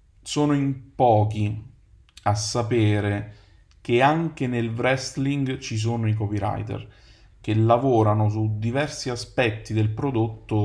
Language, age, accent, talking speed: Italian, 30-49, native, 115 wpm